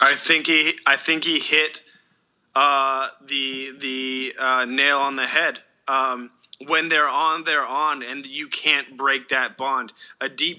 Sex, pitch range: male, 135-165 Hz